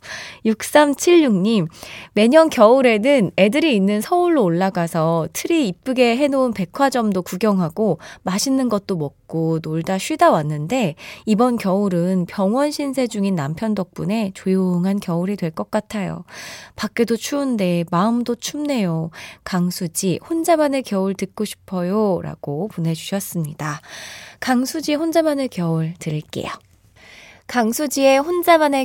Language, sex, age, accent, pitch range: Korean, female, 20-39, native, 185-265 Hz